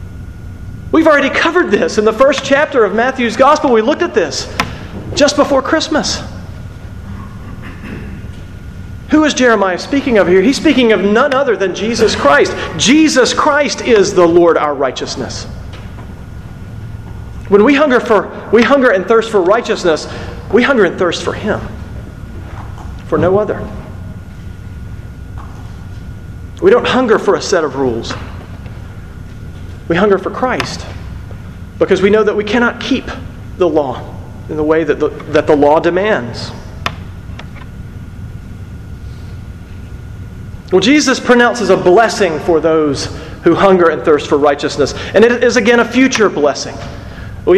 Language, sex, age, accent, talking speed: English, male, 40-59, American, 135 wpm